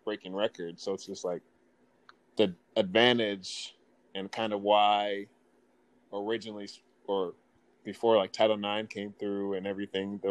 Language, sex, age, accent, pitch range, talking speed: English, male, 20-39, American, 100-115 Hz, 135 wpm